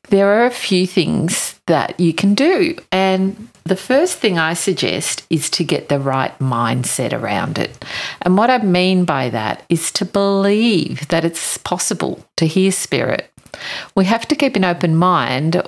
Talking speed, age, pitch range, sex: 170 wpm, 50-69, 150-200 Hz, female